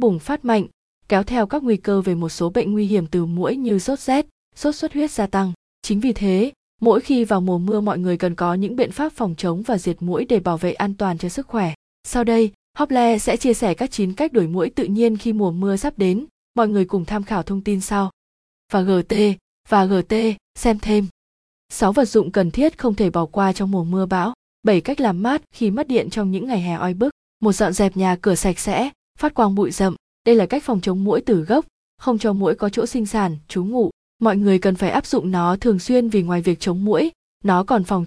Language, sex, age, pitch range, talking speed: Vietnamese, female, 20-39, 190-235 Hz, 245 wpm